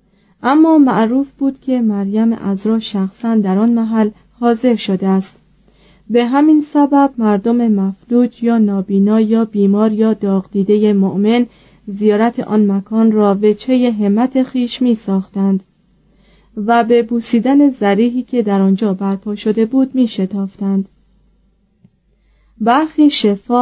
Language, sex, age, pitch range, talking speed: Persian, female, 30-49, 195-240 Hz, 125 wpm